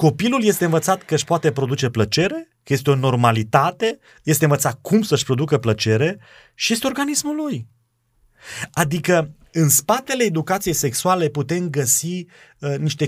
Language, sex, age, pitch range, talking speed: Romanian, male, 30-49, 110-150 Hz, 140 wpm